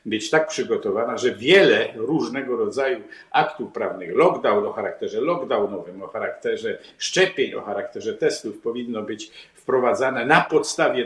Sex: male